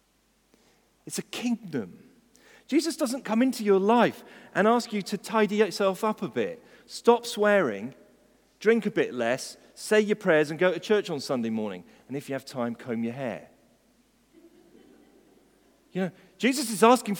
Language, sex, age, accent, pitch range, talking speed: English, male, 40-59, British, 165-240 Hz, 165 wpm